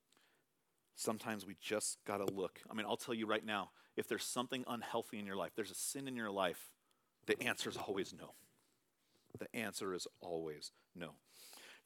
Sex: male